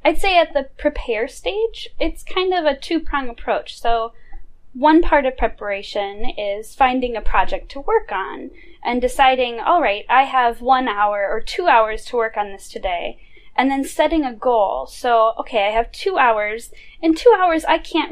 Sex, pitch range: female, 225-305 Hz